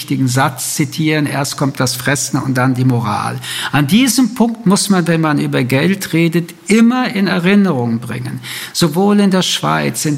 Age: 60-79